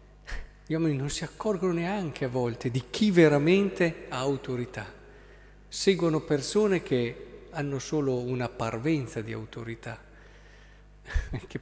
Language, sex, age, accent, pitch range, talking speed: Italian, male, 50-69, native, 115-155 Hz, 120 wpm